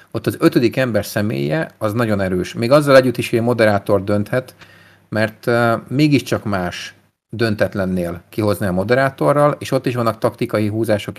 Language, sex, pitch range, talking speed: Hungarian, male, 100-120 Hz, 155 wpm